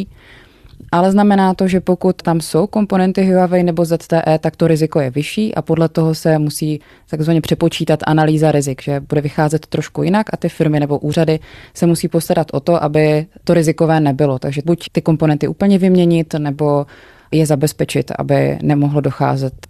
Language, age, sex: Czech, 20-39, female